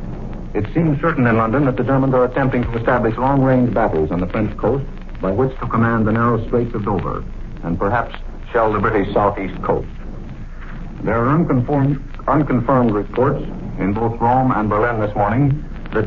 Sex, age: male, 60-79